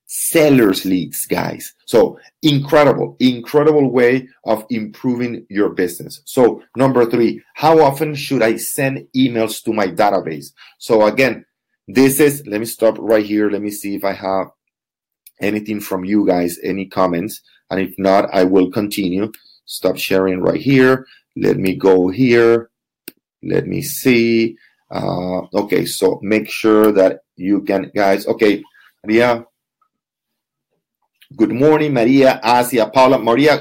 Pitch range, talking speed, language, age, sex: 105-130 Hz, 140 wpm, English, 30-49, male